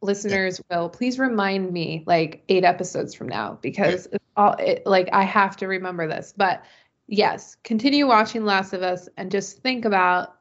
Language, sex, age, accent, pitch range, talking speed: English, female, 20-39, American, 190-215 Hz, 180 wpm